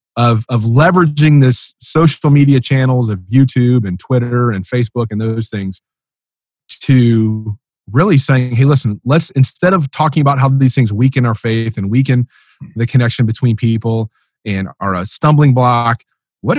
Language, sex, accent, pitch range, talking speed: English, male, American, 110-150 Hz, 160 wpm